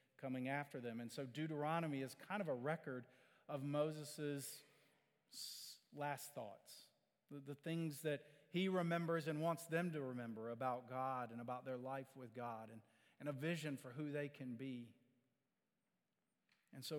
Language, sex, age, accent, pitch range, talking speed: English, male, 40-59, American, 130-160 Hz, 155 wpm